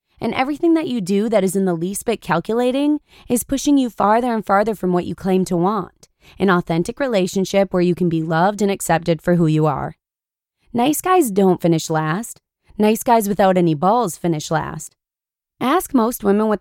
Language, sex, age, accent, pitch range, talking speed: English, female, 20-39, American, 175-235 Hz, 195 wpm